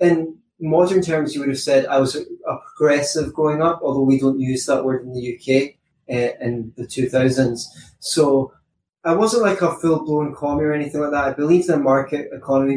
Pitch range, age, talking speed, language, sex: 120-140 Hz, 20-39, 200 wpm, English, male